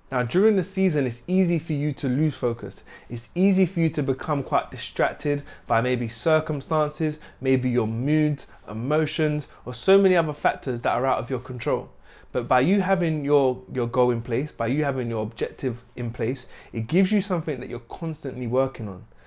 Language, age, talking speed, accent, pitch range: English, 20-39, 195 wpm, British, 120-155 Hz